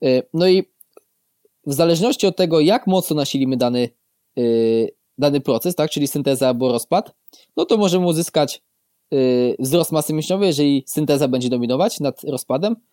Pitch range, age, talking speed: 140-180 Hz, 20-39, 140 wpm